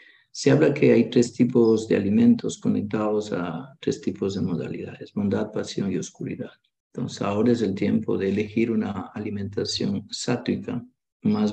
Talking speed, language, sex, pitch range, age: 150 wpm, Spanish, male, 110-145 Hz, 50-69